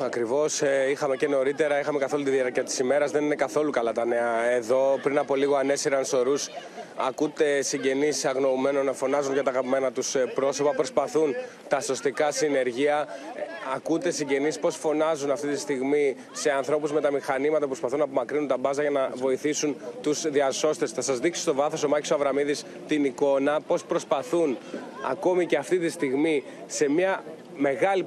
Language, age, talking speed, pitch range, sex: Greek, 20-39, 170 wpm, 140-160 Hz, male